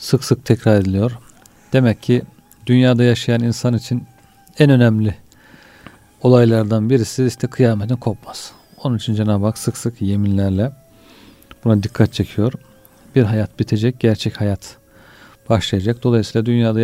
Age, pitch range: 40-59, 110-125 Hz